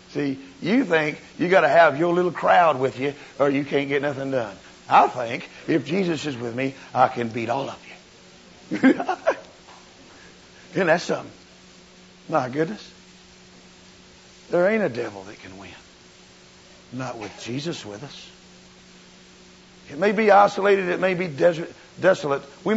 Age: 60-79